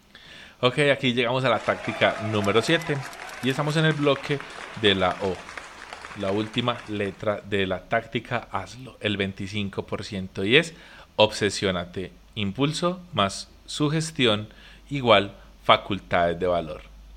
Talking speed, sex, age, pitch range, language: 120 wpm, male, 30-49, 100-135 Hz, Spanish